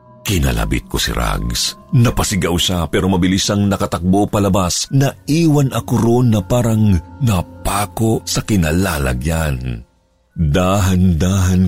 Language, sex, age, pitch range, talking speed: Filipino, male, 50-69, 85-115 Hz, 110 wpm